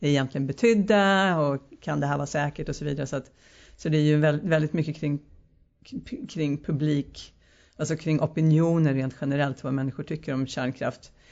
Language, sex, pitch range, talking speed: Swedish, female, 140-160 Hz, 170 wpm